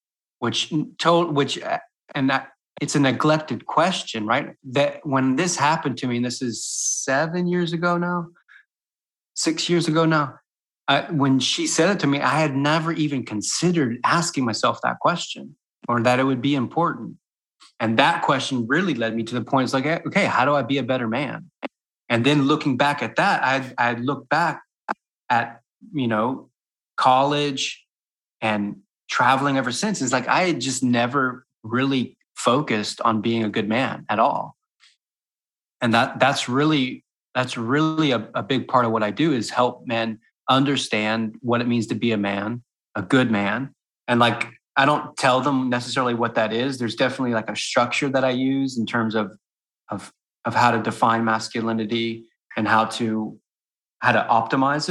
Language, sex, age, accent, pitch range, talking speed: English, male, 30-49, American, 115-145 Hz, 175 wpm